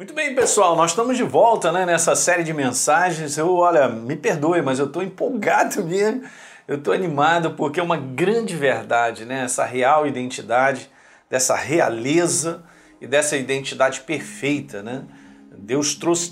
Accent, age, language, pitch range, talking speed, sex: Brazilian, 50-69, Portuguese, 130-185 Hz, 155 wpm, male